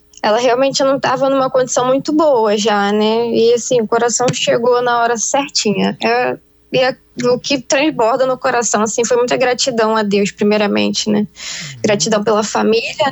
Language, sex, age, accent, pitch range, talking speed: Portuguese, female, 10-29, Brazilian, 215-250 Hz, 160 wpm